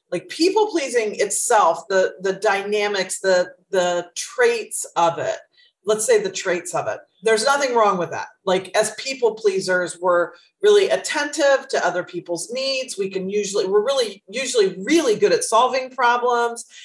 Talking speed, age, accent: 155 wpm, 40-59, American